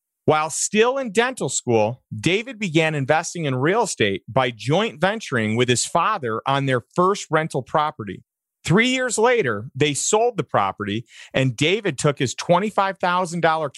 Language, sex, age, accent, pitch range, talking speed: English, male, 40-59, American, 135-195 Hz, 150 wpm